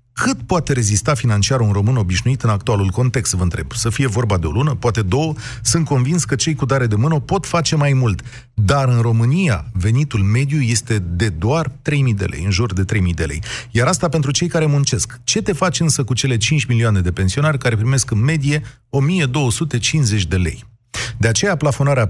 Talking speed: 205 wpm